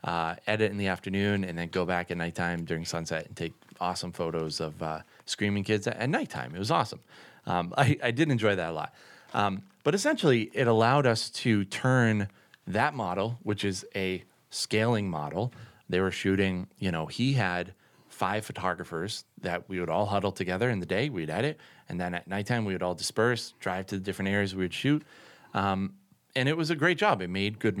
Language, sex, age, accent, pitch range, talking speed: English, male, 30-49, American, 95-125 Hz, 205 wpm